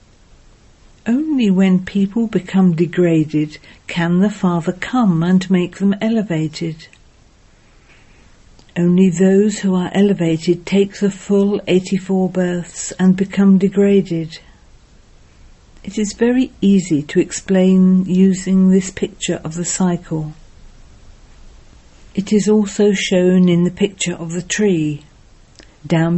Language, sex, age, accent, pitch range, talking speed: English, female, 50-69, British, 165-200 Hz, 110 wpm